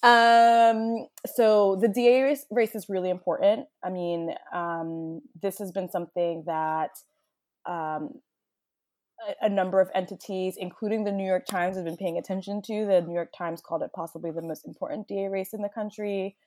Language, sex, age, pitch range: English, female, 20-39, 165-205 Hz